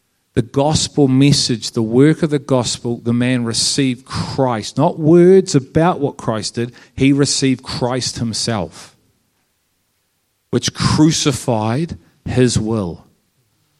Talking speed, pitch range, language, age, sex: 115 wpm, 120-150 Hz, English, 40-59, male